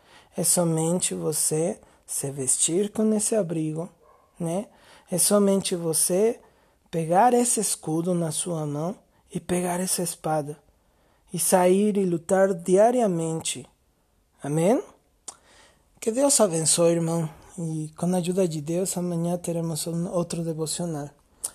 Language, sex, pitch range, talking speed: Portuguese, male, 160-190 Hz, 115 wpm